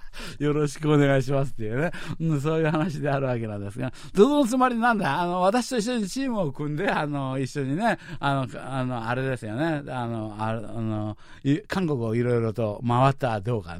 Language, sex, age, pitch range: Japanese, male, 60-79, 130-200 Hz